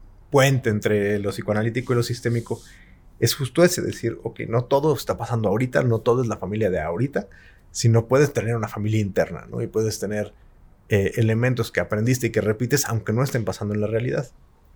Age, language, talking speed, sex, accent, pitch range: 30-49, English, 195 wpm, male, Mexican, 95-125 Hz